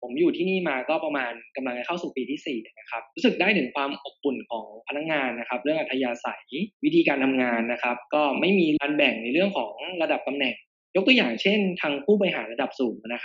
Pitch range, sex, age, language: 125-175 Hz, male, 20-39, Thai